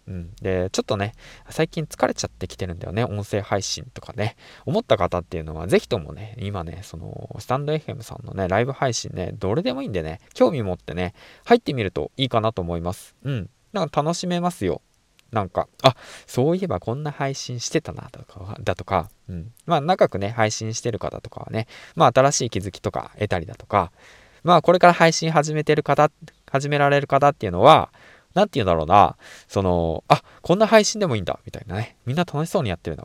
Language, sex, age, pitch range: Japanese, male, 20-39, 95-145 Hz